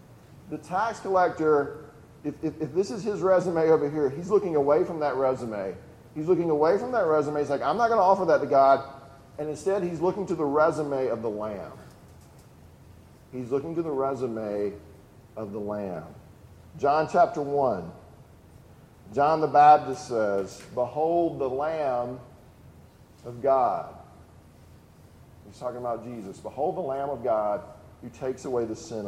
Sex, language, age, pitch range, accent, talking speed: male, English, 40-59, 125-170 Hz, American, 160 wpm